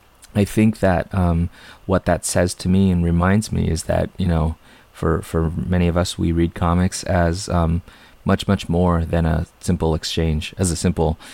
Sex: male